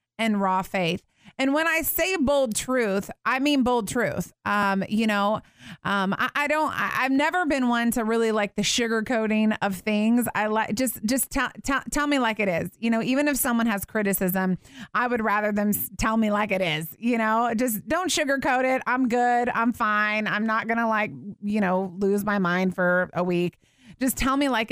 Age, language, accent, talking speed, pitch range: 30-49, English, American, 210 wpm, 205-255 Hz